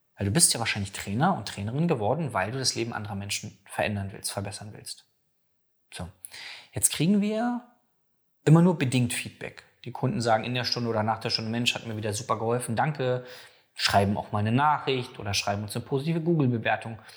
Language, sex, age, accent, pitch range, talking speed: German, male, 20-39, German, 110-150 Hz, 190 wpm